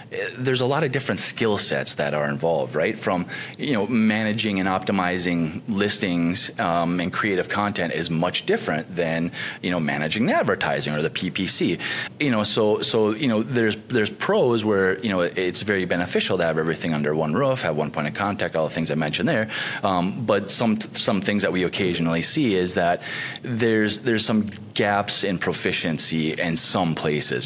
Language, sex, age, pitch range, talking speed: English, male, 30-49, 85-115 Hz, 190 wpm